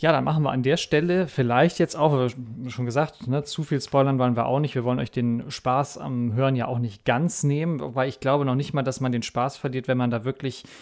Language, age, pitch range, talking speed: German, 30-49, 120-140 Hz, 260 wpm